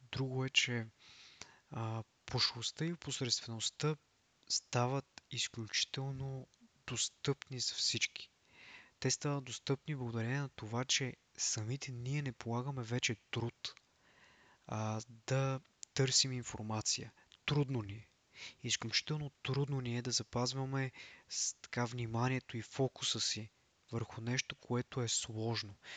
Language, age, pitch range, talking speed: Bulgarian, 20-39, 110-135 Hz, 110 wpm